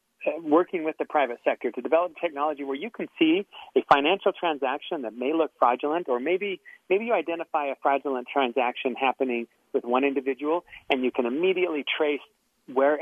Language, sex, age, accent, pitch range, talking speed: English, male, 40-59, American, 130-175 Hz, 170 wpm